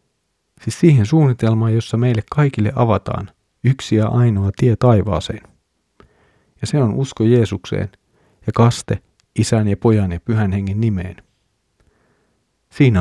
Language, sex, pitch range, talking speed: Finnish, male, 95-120 Hz, 125 wpm